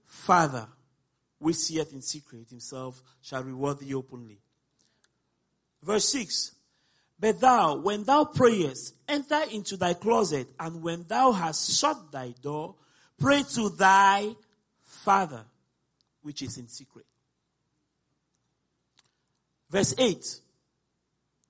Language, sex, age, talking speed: English, male, 40-59, 105 wpm